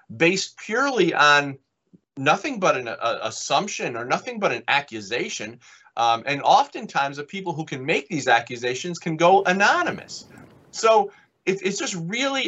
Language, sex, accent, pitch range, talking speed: English, male, American, 120-175 Hz, 150 wpm